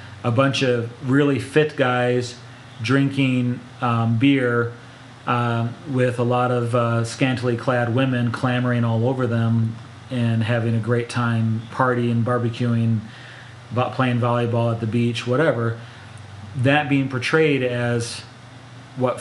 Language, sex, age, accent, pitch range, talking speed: English, male, 30-49, American, 115-130 Hz, 125 wpm